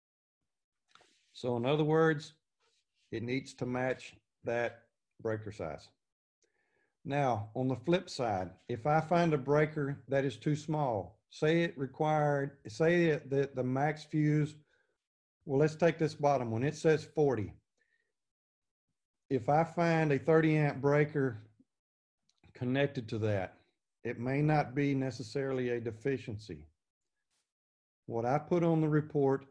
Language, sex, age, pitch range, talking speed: English, male, 50-69, 115-150 Hz, 130 wpm